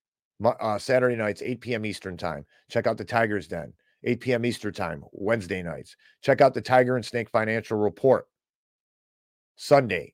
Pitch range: 100-125 Hz